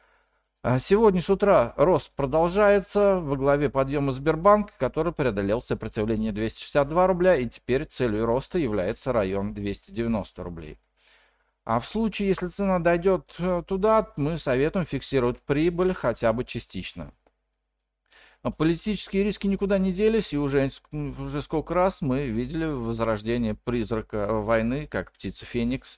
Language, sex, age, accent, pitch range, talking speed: Russian, male, 50-69, native, 115-185 Hz, 125 wpm